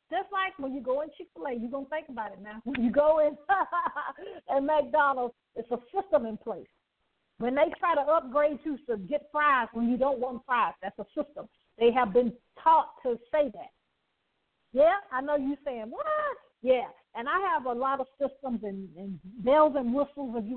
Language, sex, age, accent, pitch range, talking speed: English, female, 50-69, American, 230-295 Hz, 205 wpm